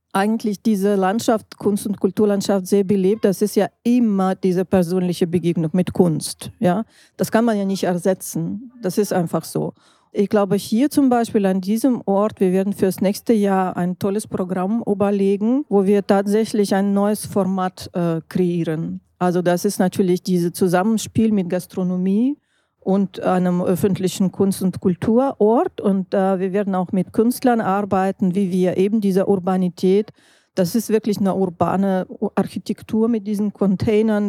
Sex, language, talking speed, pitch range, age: female, German, 155 wpm, 190-215 Hz, 40-59